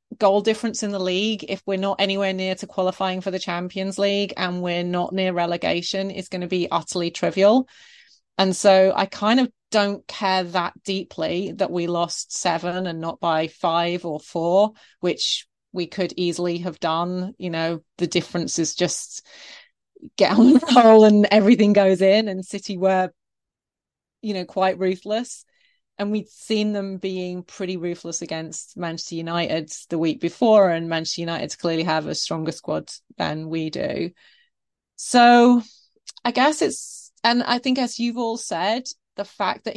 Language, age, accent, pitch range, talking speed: English, 30-49, British, 175-215 Hz, 165 wpm